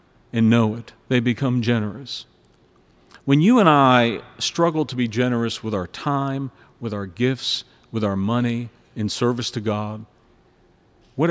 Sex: male